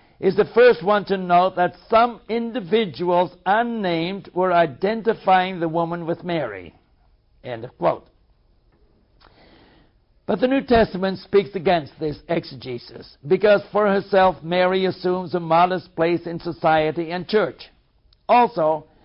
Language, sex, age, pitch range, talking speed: English, male, 60-79, 160-200 Hz, 125 wpm